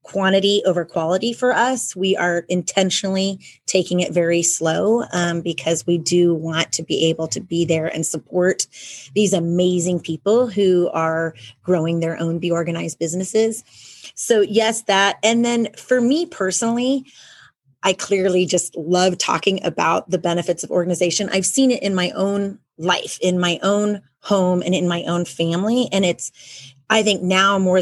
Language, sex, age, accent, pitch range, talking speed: English, female, 30-49, American, 170-205 Hz, 165 wpm